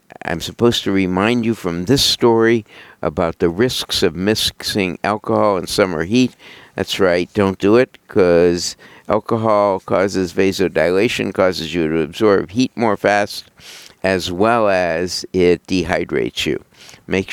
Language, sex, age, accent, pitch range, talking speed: English, male, 60-79, American, 90-115 Hz, 140 wpm